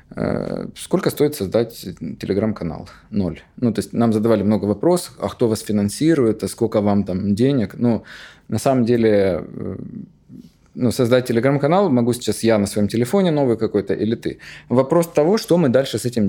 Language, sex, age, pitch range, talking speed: Ukrainian, male, 20-39, 105-130 Hz, 165 wpm